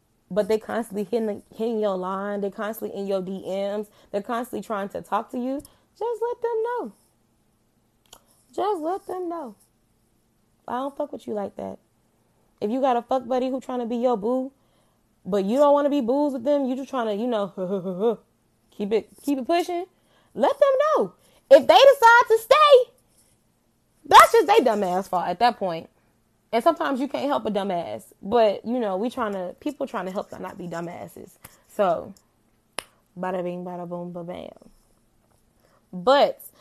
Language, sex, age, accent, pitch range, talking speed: English, female, 20-39, American, 190-250 Hz, 180 wpm